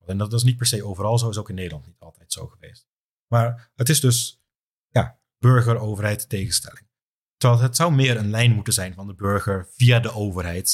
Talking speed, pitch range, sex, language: 200 wpm, 95-120 Hz, male, Dutch